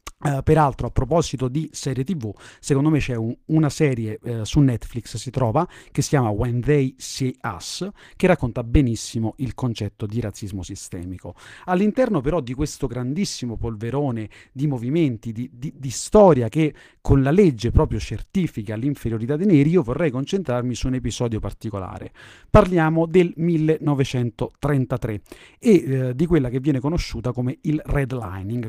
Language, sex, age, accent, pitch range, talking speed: Italian, male, 30-49, native, 120-155 Hz, 145 wpm